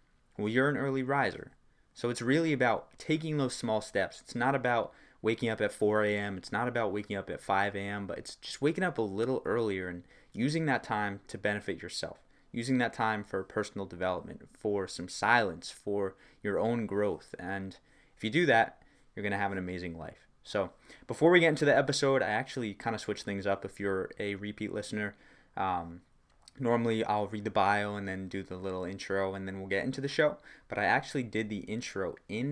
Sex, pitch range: male, 100-120 Hz